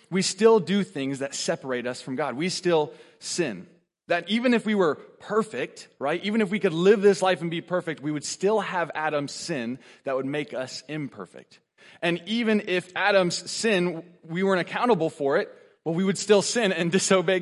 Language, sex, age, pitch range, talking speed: English, male, 20-39, 155-205 Hz, 195 wpm